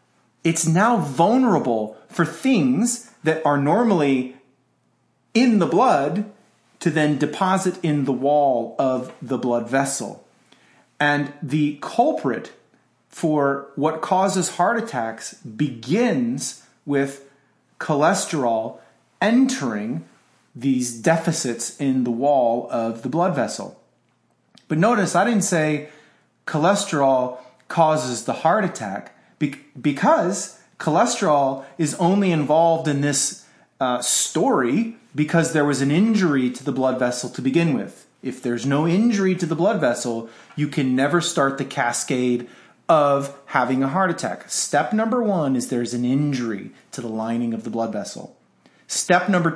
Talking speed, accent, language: 130 wpm, American, English